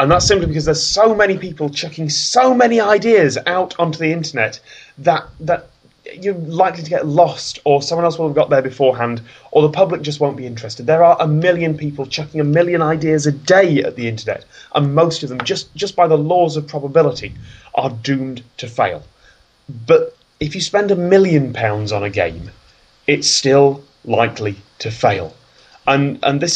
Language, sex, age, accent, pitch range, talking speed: English, male, 30-49, British, 130-175 Hz, 190 wpm